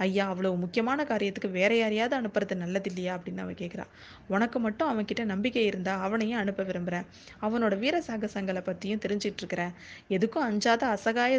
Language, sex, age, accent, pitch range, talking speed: Tamil, female, 20-39, native, 195-235 Hz, 150 wpm